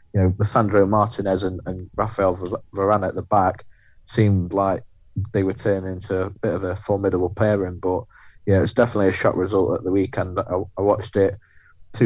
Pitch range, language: 95-100 Hz, English